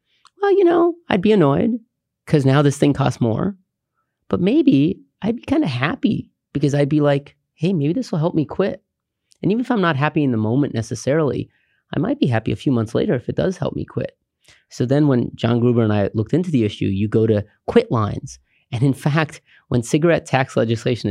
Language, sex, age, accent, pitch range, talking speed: English, male, 30-49, American, 110-155 Hz, 220 wpm